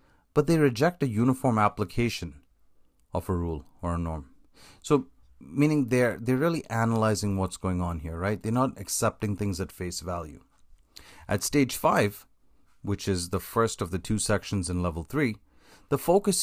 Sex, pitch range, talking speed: male, 90-115 Hz, 170 wpm